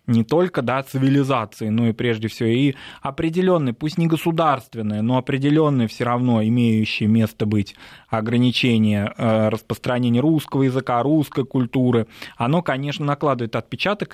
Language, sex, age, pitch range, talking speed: Russian, male, 20-39, 120-150 Hz, 125 wpm